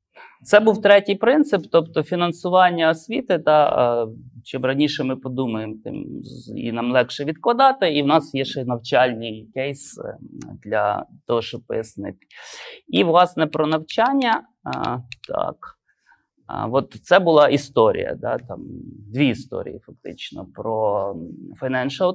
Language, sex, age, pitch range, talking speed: Ukrainian, male, 20-39, 120-160 Hz, 120 wpm